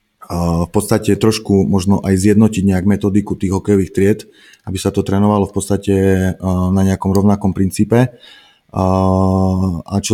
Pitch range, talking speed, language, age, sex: 95-105 Hz, 135 wpm, Slovak, 30-49, male